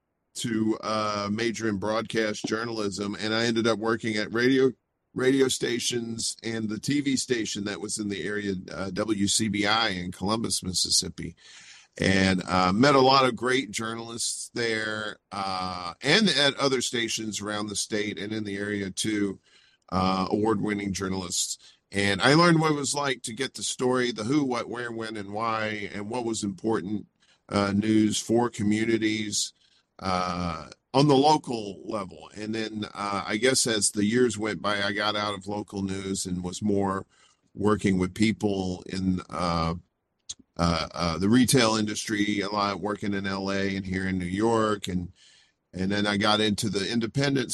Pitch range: 100-115 Hz